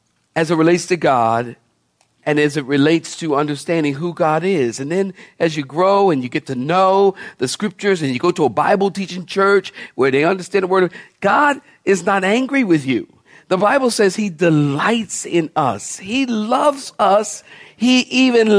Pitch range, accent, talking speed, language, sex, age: 135-200 Hz, American, 185 wpm, English, male, 50-69